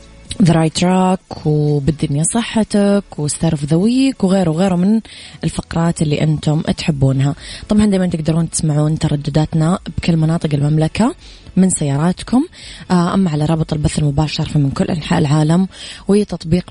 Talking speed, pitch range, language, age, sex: 120 wpm, 155-185 Hz, English, 20-39, female